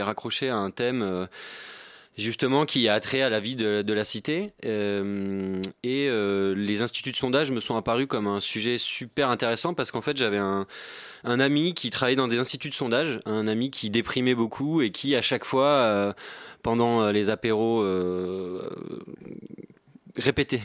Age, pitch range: 20-39, 110-140 Hz